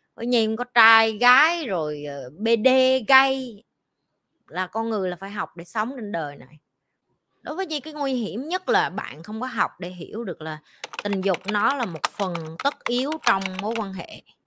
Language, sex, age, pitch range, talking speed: Vietnamese, female, 20-39, 175-235 Hz, 190 wpm